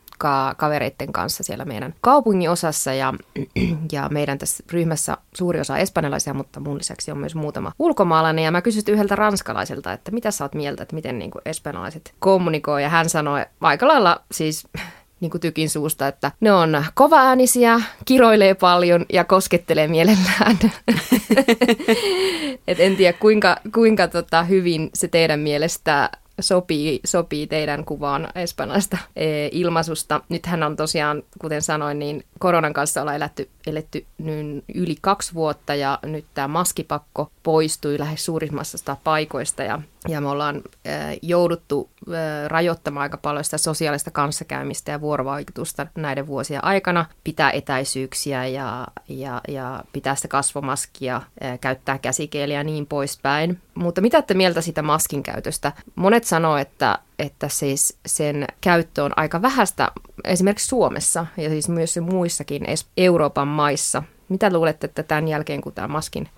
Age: 20-39